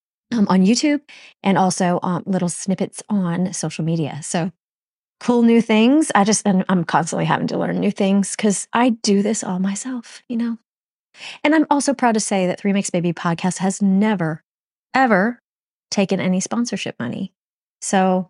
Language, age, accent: English, 30-49, American